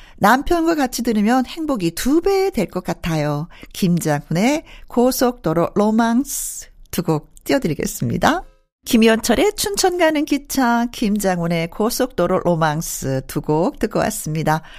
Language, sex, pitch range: Korean, female, 175-255 Hz